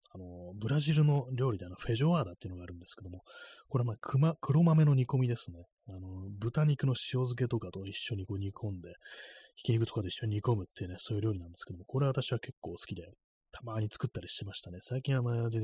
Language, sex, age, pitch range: Japanese, male, 30-49, 95-125 Hz